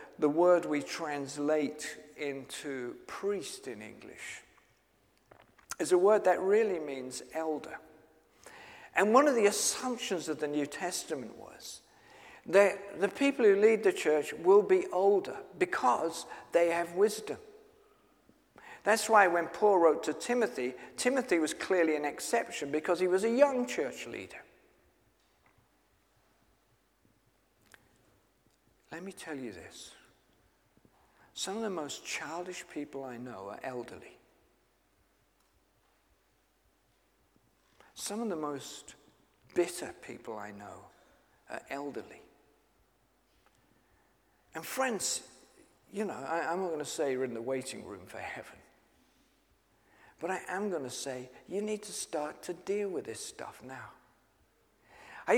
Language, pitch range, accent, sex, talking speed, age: English, 150-225 Hz, British, male, 125 wpm, 50-69